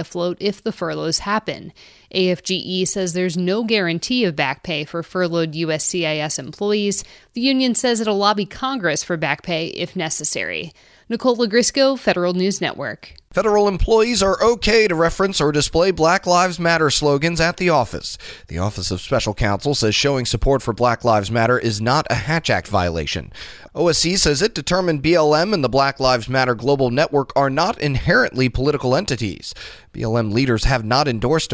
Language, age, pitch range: English, 30-49, 125-175 Hz